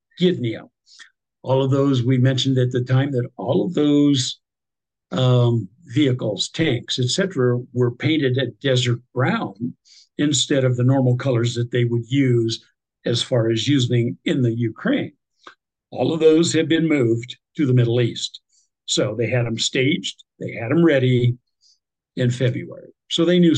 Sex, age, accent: male, 60-79, American